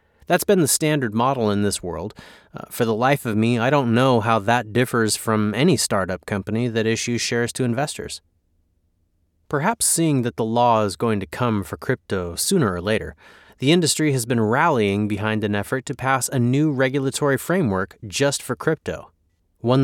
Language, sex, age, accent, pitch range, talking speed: English, male, 30-49, American, 105-140 Hz, 185 wpm